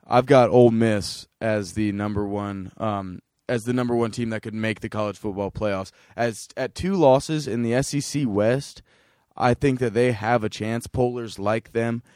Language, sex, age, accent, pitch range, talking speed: English, male, 20-39, American, 110-135 Hz, 190 wpm